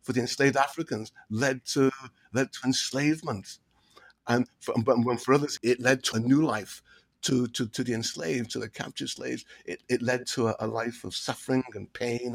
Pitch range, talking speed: 125-160 Hz, 195 wpm